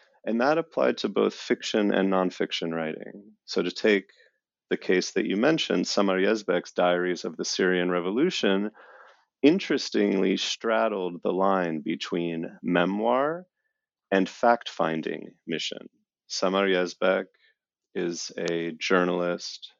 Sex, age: male, 30-49